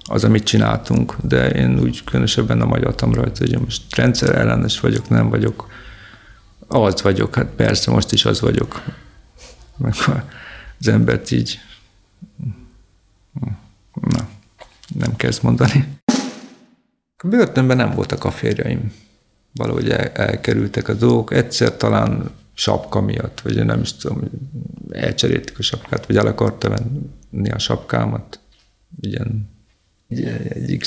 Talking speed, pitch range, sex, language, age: 120 wpm, 100-130 Hz, male, Hungarian, 50-69